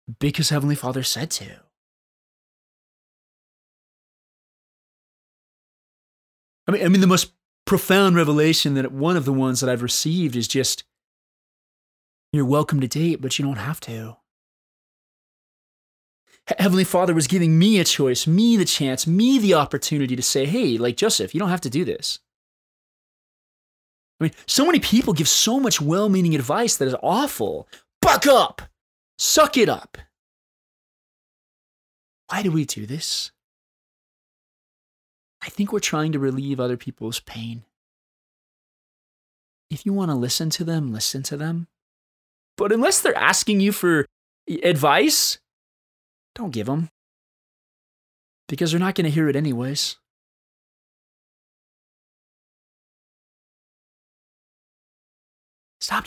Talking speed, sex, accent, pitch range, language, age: 125 wpm, male, American, 130-185 Hz, English, 20-39